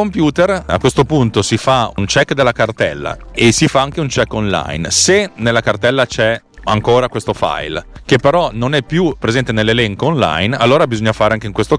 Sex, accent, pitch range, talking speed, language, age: male, native, 105-140 Hz, 195 wpm, Italian, 30-49